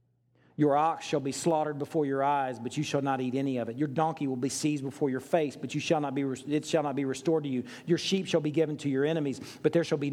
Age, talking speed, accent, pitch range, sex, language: 40-59, 285 wpm, American, 120-155 Hz, male, English